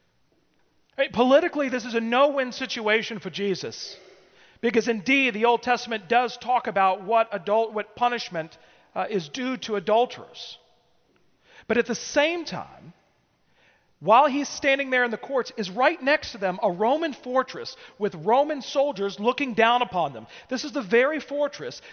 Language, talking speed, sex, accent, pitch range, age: English, 155 wpm, male, American, 205-255 Hz, 40-59